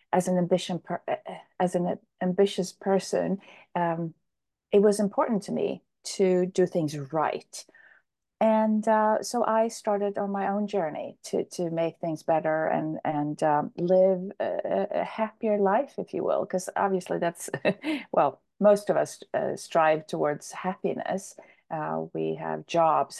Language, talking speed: English, 145 wpm